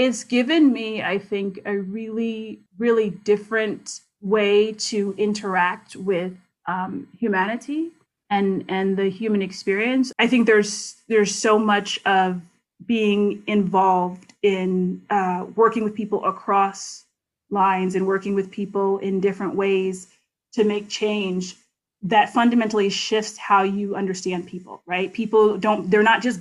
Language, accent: English, American